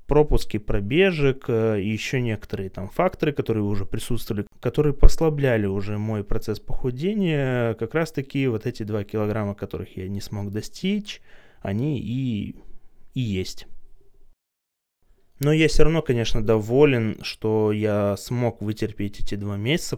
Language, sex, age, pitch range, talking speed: Russian, male, 20-39, 105-140 Hz, 135 wpm